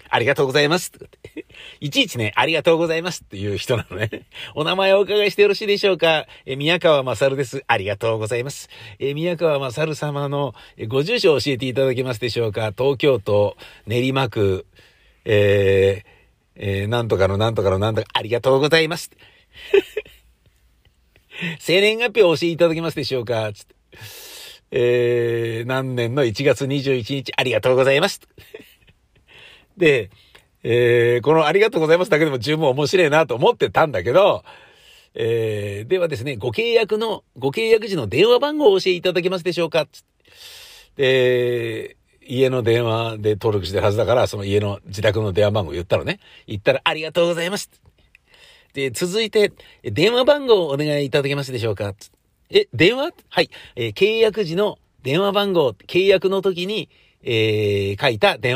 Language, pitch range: Japanese, 115-180 Hz